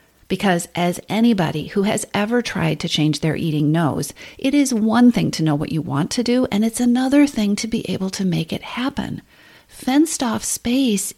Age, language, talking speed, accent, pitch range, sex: 40-59, English, 200 wpm, American, 170-235 Hz, female